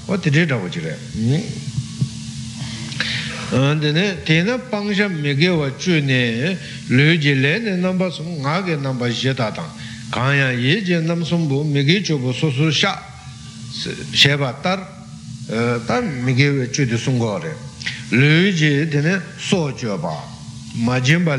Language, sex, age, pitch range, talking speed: Italian, male, 60-79, 120-155 Hz, 85 wpm